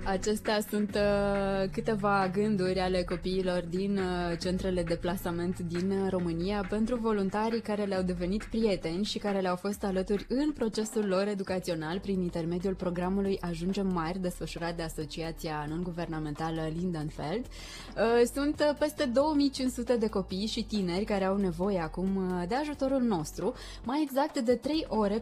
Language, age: Romanian, 20-39